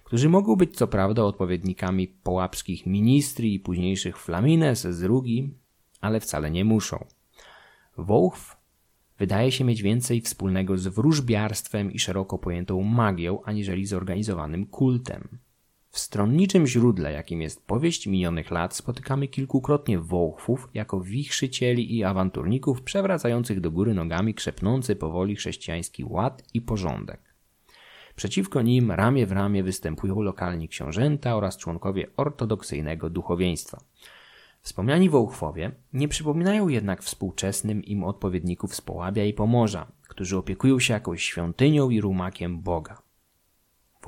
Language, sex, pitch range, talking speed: Polish, male, 95-125 Hz, 125 wpm